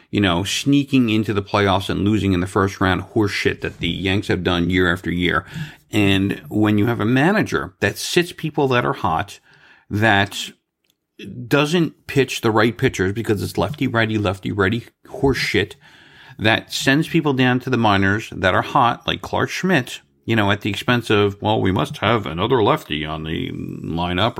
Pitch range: 100-130 Hz